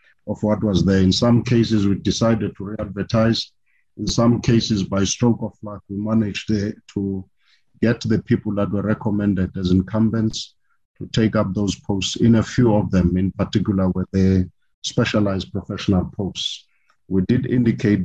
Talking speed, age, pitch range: 165 wpm, 50-69, 95-110 Hz